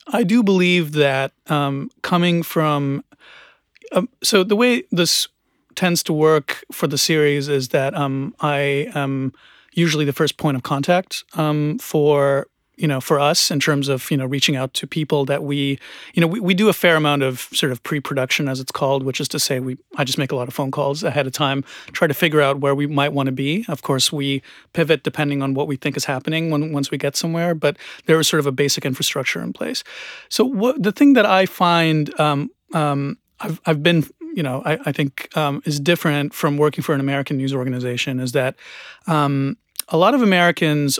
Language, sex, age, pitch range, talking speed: English, male, 30-49, 140-165 Hz, 215 wpm